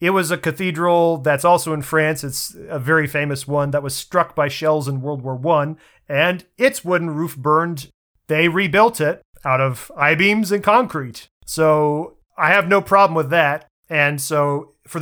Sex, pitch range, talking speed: male, 140-170 Hz, 180 wpm